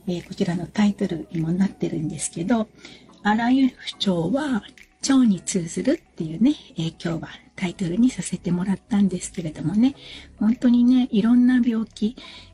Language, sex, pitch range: Japanese, female, 180-235 Hz